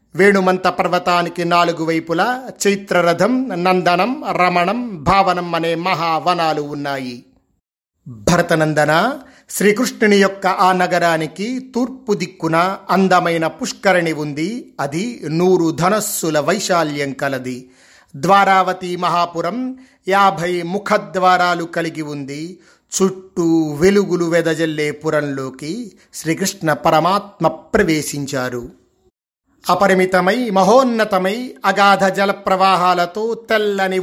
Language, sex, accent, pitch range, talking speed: Telugu, male, native, 170-205 Hz, 80 wpm